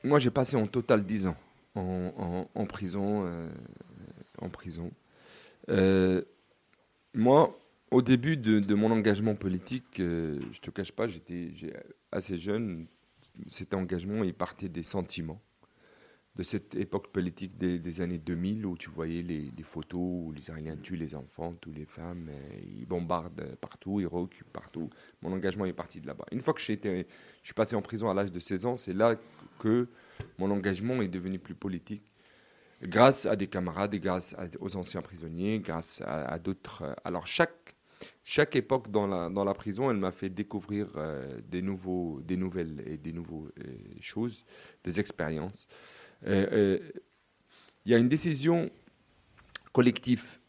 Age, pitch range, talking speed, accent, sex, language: 40-59, 85-105 Hz, 170 wpm, French, male, French